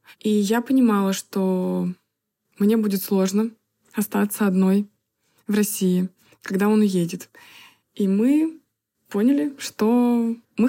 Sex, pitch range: female, 185-225 Hz